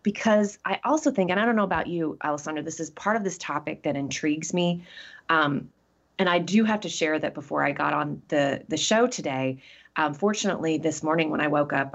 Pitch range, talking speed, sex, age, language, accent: 145-190 Hz, 220 wpm, female, 30-49, English, American